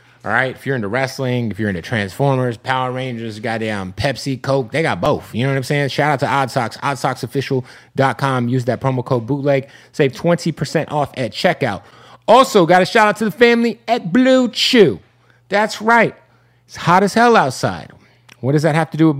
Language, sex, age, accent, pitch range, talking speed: English, male, 30-49, American, 120-150 Hz, 200 wpm